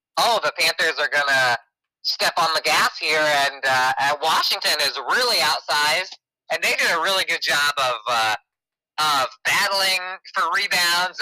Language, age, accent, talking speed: English, 20-39, American, 160 wpm